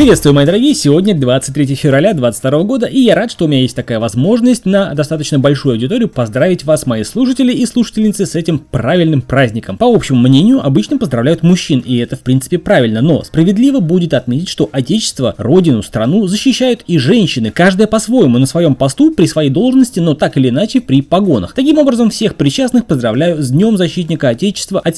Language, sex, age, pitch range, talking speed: Russian, male, 20-39, 135-205 Hz, 185 wpm